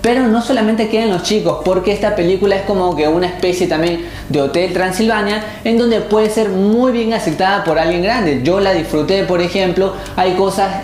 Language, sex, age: Spanish, male, 20-39